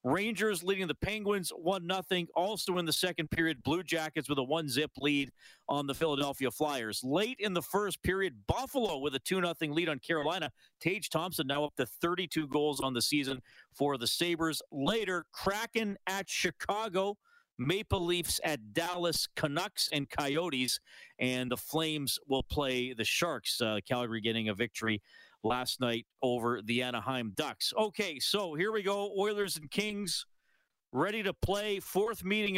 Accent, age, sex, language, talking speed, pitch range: American, 40-59, male, English, 160 wpm, 130-185 Hz